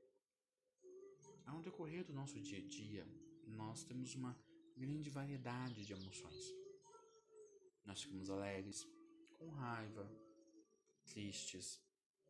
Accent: Brazilian